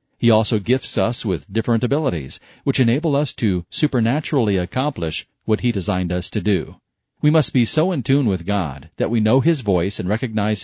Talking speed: 190 wpm